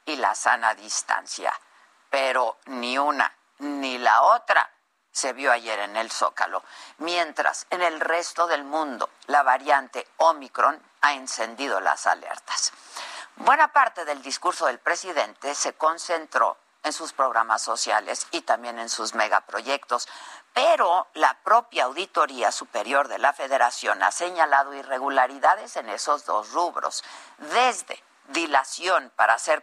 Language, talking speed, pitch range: Spanish, 130 wpm, 130-175 Hz